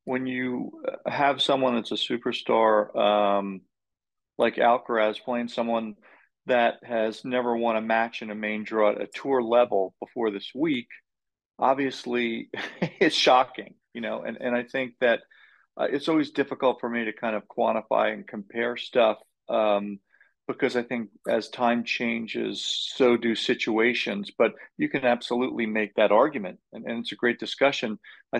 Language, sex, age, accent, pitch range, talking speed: English, male, 40-59, American, 110-125 Hz, 160 wpm